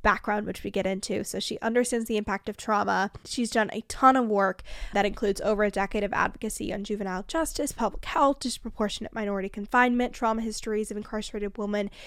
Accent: American